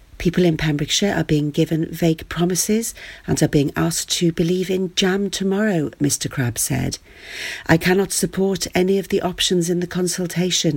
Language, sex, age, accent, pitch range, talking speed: English, female, 40-59, British, 150-185 Hz, 165 wpm